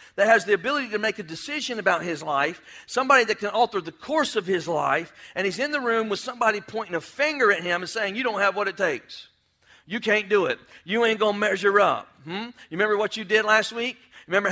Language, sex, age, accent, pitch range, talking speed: English, male, 50-69, American, 205-260 Hz, 245 wpm